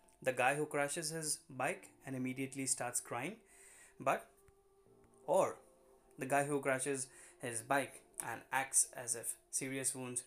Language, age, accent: Hindi, 20-39, native